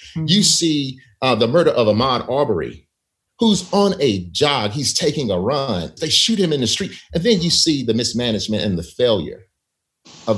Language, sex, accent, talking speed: English, male, American, 185 wpm